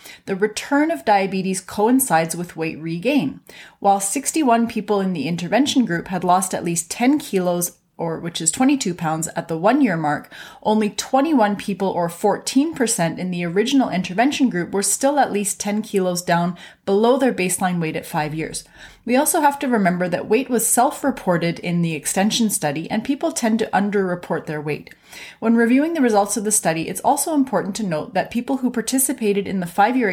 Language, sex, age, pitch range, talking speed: English, female, 30-49, 175-235 Hz, 185 wpm